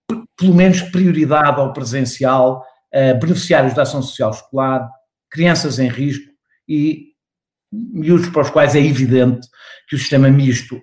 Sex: male